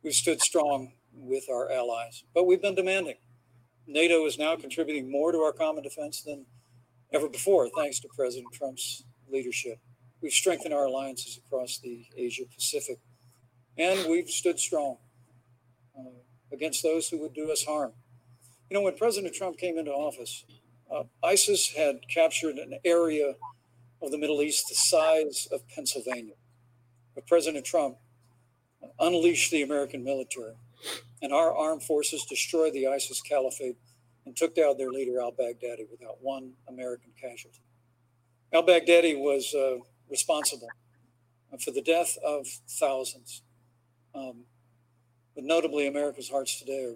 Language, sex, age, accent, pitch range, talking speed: English, male, 60-79, American, 120-155 Hz, 140 wpm